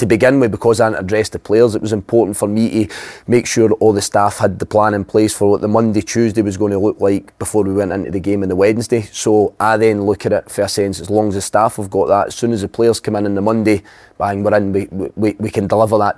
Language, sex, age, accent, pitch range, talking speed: English, male, 20-39, British, 100-115 Hz, 295 wpm